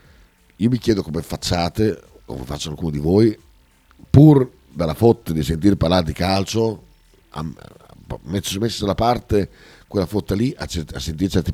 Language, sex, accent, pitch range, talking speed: Italian, male, native, 80-110 Hz, 165 wpm